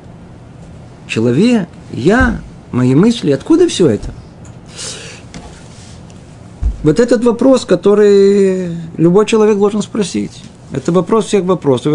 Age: 50-69